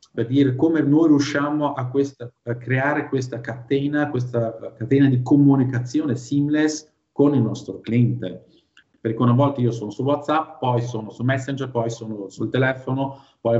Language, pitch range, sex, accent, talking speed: Italian, 115-140 Hz, male, native, 160 wpm